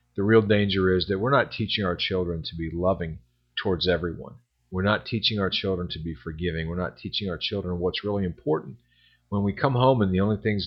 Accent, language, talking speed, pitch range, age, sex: American, English, 220 wpm, 85-110 Hz, 40-59, male